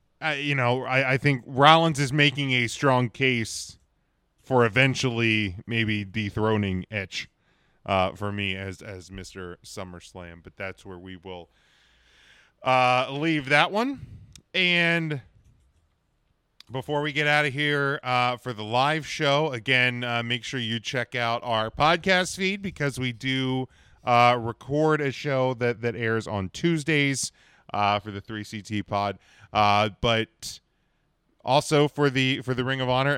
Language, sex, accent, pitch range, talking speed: English, male, American, 100-135 Hz, 150 wpm